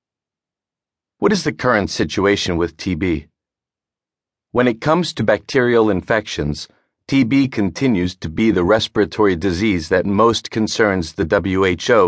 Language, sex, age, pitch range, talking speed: English, male, 40-59, 95-120 Hz, 125 wpm